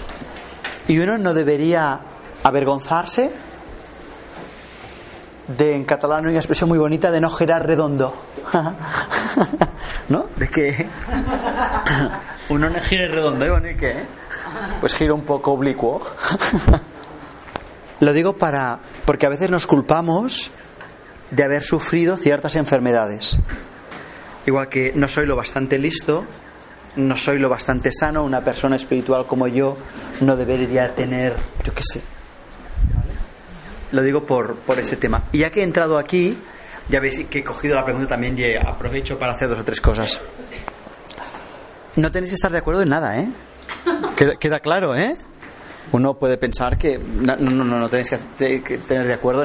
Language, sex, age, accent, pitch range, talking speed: Spanish, male, 30-49, Spanish, 130-165 Hz, 150 wpm